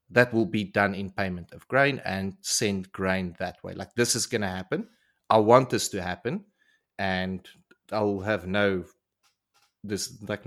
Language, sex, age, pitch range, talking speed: English, male, 30-49, 95-110 Hz, 170 wpm